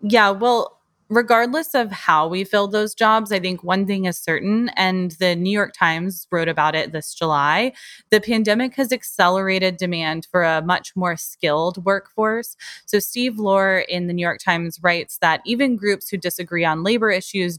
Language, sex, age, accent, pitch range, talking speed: English, female, 20-39, American, 165-210 Hz, 180 wpm